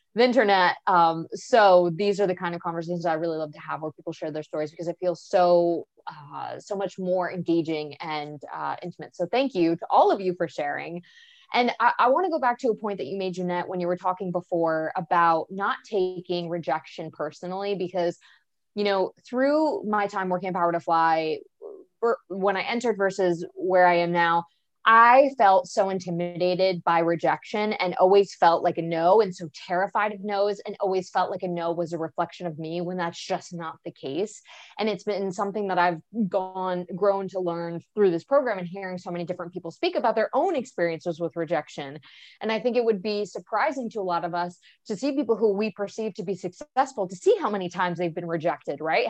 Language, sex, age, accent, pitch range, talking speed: English, female, 20-39, American, 170-210 Hz, 215 wpm